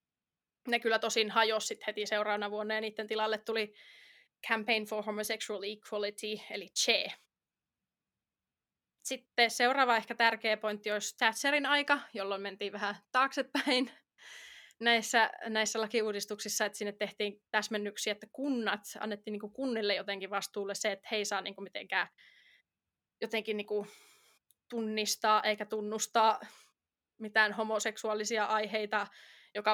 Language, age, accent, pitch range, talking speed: Finnish, 20-39, native, 210-230 Hz, 120 wpm